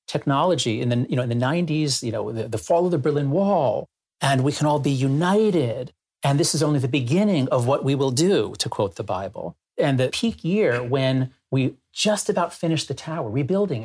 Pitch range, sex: 125-175 Hz, male